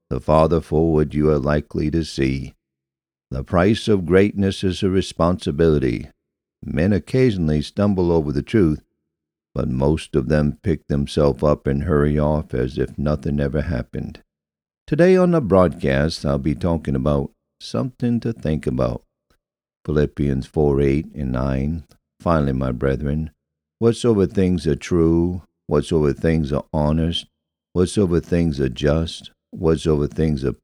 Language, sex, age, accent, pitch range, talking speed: English, male, 50-69, American, 70-90 Hz, 140 wpm